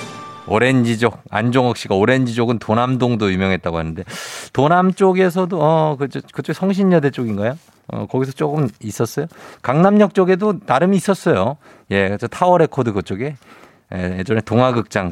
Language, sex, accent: Korean, male, native